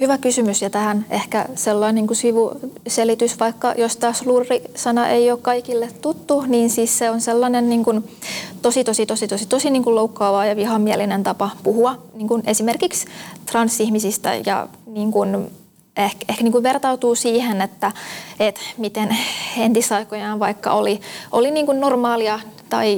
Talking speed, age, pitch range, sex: 150 wpm, 20-39, 210-235 Hz, female